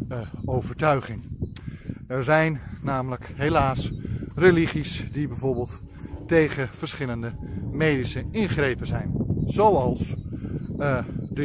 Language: Dutch